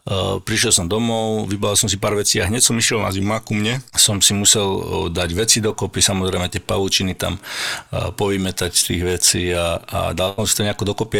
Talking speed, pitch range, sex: 220 wpm, 95-105 Hz, male